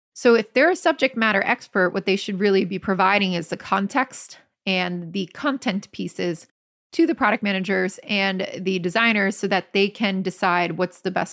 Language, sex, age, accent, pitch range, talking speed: English, female, 30-49, American, 185-215 Hz, 185 wpm